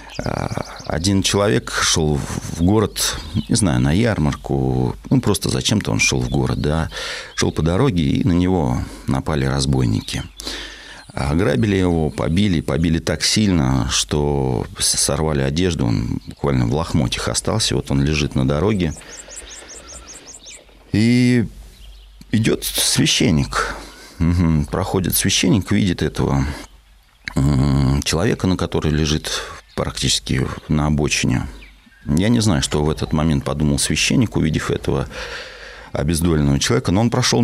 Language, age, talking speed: Russian, 40-59, 120 wpm